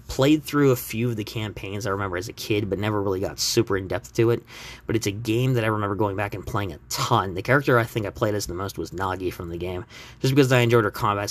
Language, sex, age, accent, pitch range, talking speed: English, male, 20-39, American, 100-120 Hz, 280 wpm